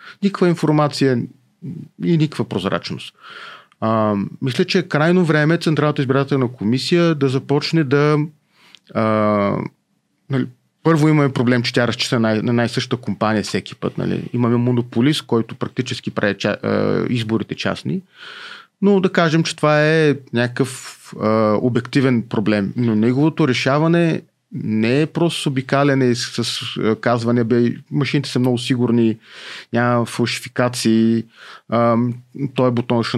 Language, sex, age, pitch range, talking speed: Bulgarian, male, 30-49, 115-150 Hz, 125 wpm